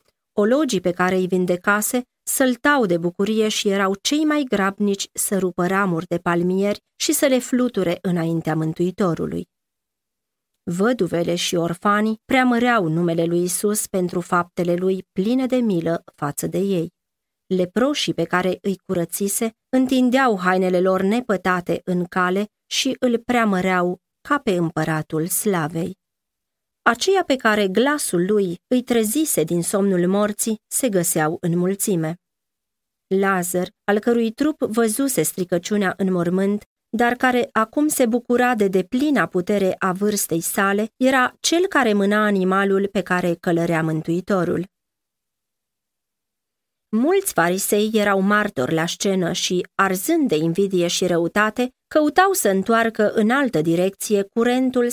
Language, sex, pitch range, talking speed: Romanian, female, 175-230 Hz, 130 wpm